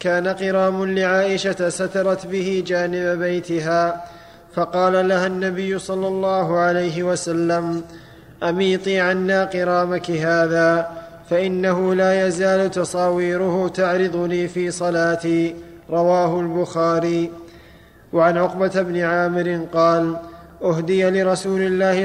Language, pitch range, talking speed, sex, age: Arabic, 170-185 Hz, 95 wpm, male, 20-39